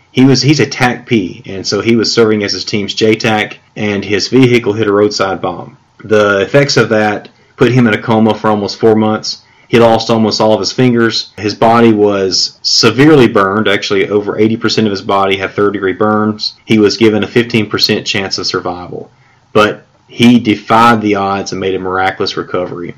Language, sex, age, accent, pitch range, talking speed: English, male, 30-49, American, 100-115 Hz, 195 wpm